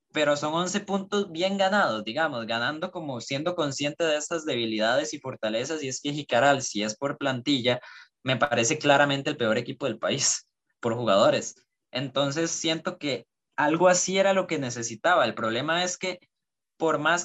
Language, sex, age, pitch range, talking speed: Spanish, male, 20-39, 130-170 Hz, 170 wpm